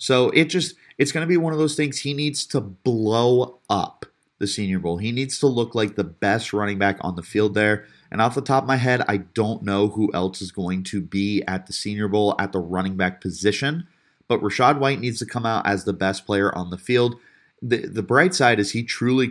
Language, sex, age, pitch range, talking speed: English, male, 30-49, 100-125 Hz, 240 wpm